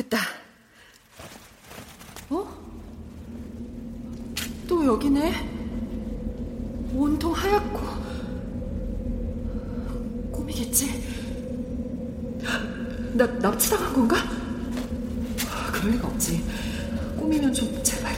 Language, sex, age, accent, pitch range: Korean, female, 40-59, native, 250-415 Hz